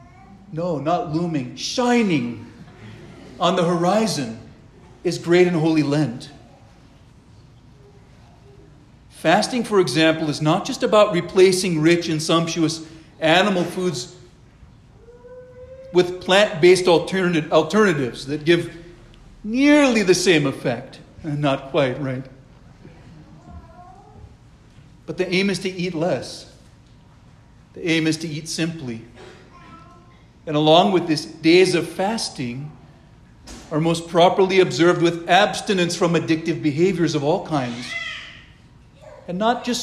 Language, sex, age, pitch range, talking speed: English, male, 50-69, 150-185 Hz, 110 wpm